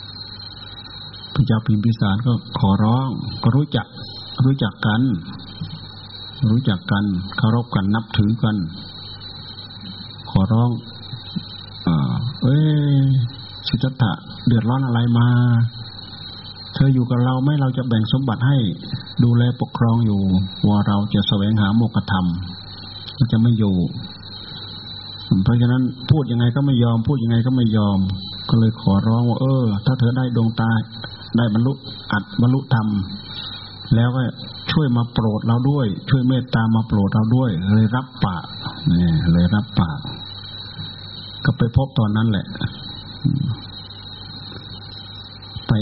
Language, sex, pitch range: Thai, male, 100-120 Hz